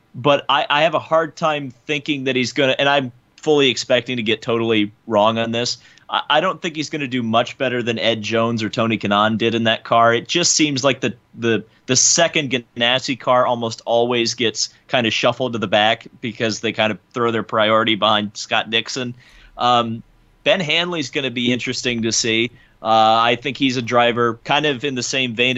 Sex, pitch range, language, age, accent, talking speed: male, 115-140 Hz, English, 30-49, American, 220 wpm